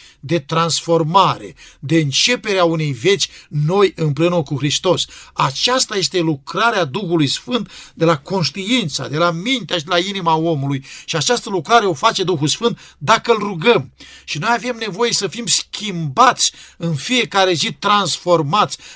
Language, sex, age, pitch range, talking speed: Romanian, male, 50-69, 165-220 Hz, 150 wpm